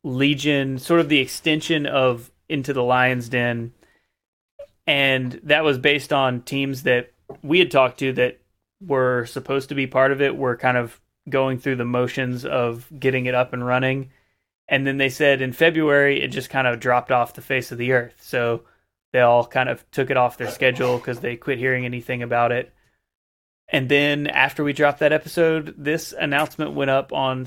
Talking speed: 190 wpm